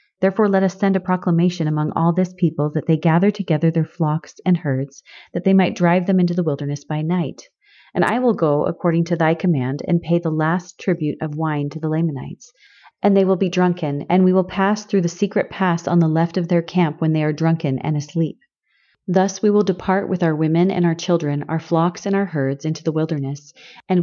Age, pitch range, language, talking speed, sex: 30-49, 155-190 Hz, English, 225 wpm, female